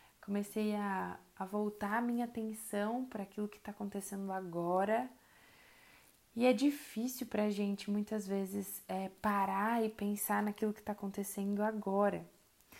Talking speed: 140 wpm